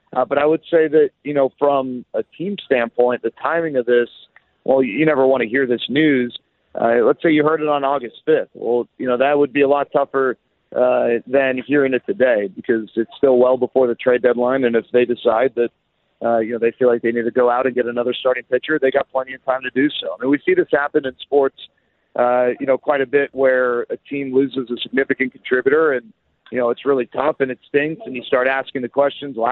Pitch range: 125-145 Hz